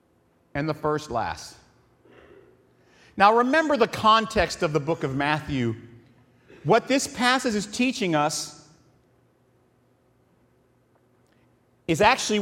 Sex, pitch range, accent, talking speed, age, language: male, 125-180 Hz, American, 100 wpm, 40-59, English